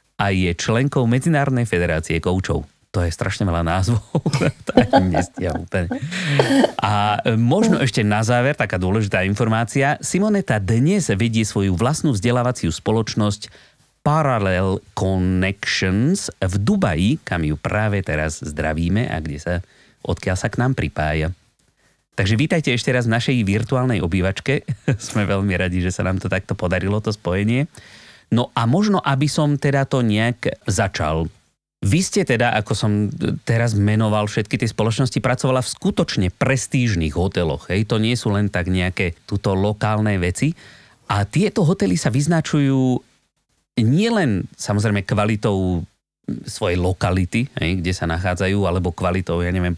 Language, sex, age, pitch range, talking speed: Slovak, male, 30-49, 95-130 Hz, 135 wpm